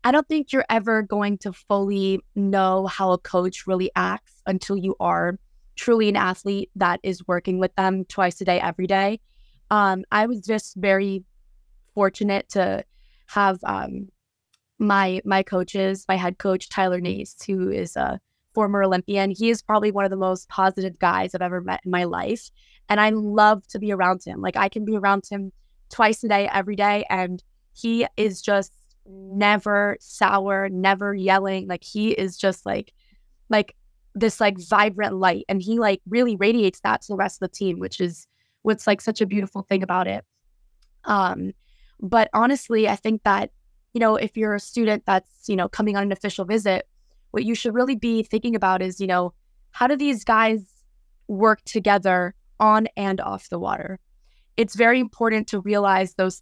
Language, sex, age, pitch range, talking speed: English, female, 20-39, 190-215 Hz, 185 wpm